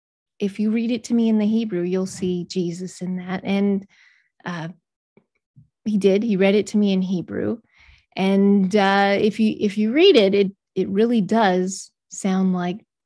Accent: American